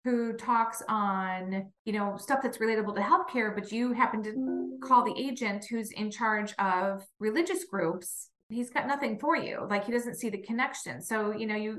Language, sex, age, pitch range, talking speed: English, female, 30-49, 205-245 Hz, 195 wpm